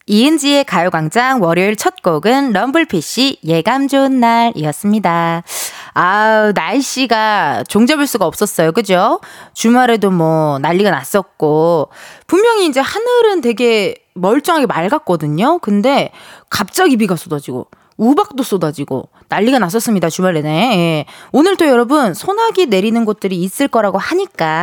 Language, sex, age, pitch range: Korean, female, 20-39, 170-275 Hz